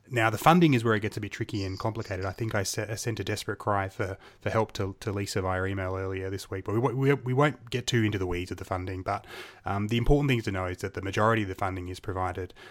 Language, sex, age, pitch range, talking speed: English, male, 20-39, 95-110 Hz, 280 wpm